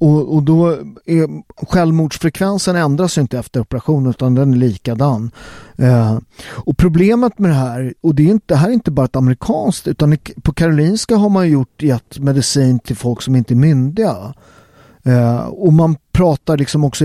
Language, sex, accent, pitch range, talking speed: Swedish, male, native, 125-170 Hz, 175 wpm